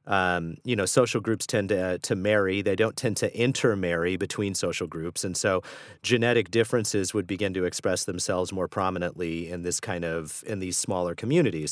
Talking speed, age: 185 wpm, 30-49